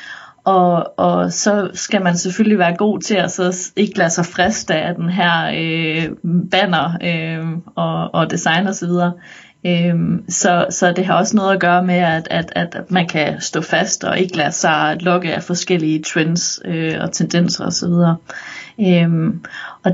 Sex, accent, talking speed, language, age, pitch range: female, native, 180 wpm, Danish, 30-49, 170-190 Hz